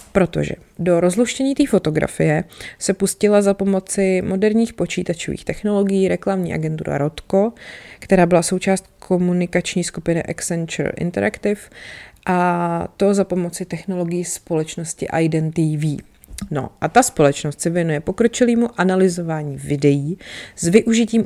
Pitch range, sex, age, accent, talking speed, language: 160-195 Hz, female, 30-49, native, 115 wpm, Czech